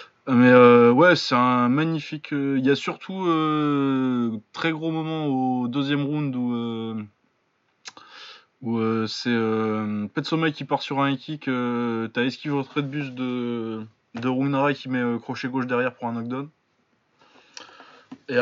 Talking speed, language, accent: 165 wpm, French, French